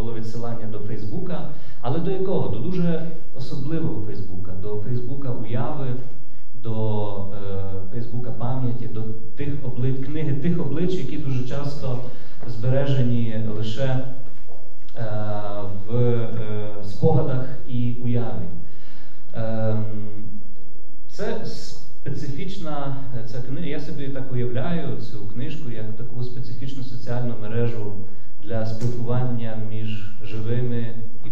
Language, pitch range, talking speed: Ukrainian, 105-135 Hz, 110 wpm